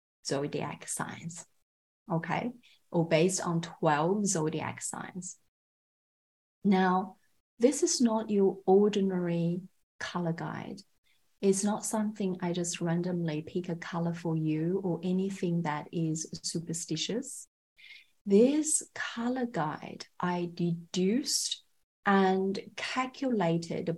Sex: female